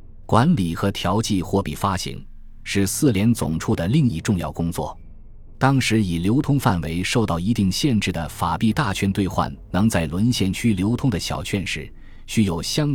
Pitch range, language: 85-115 Hz, Chinese